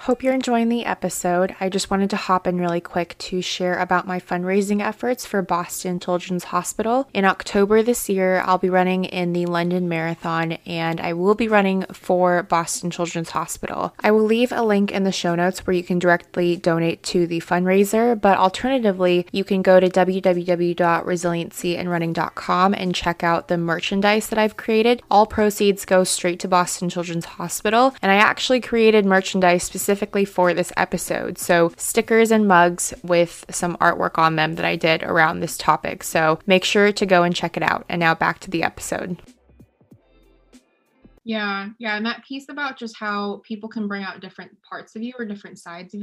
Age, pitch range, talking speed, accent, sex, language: 20-39, 175-205 Hz, 185 wpm, American, female, English